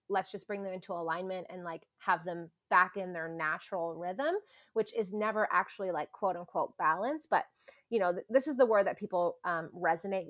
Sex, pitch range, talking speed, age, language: female, 170-205 Hz, 200 wpm, 20-39, English